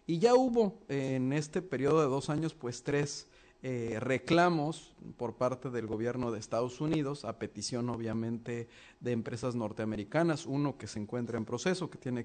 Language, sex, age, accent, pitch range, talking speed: Spanish, male, 40-59, Mexican, 120-145 Hz, 170 wpm